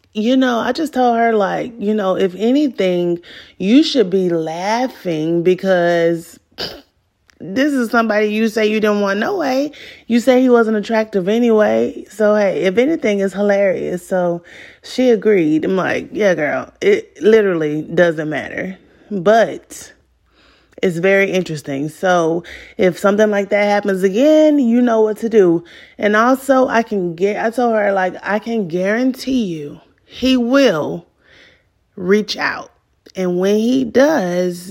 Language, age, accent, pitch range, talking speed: English, 30-49, American, 180-230 Hz, 150 wpm